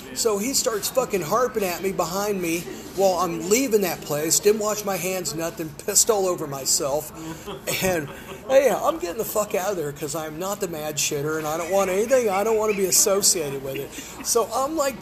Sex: male